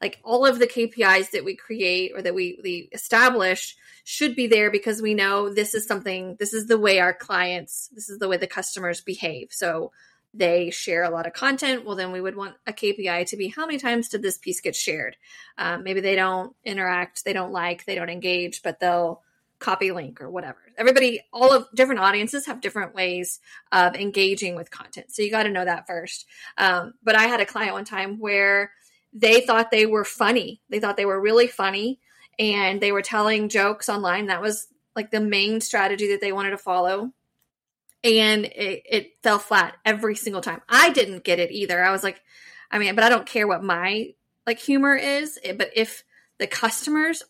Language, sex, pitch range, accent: English, female, 185-230 Hz, American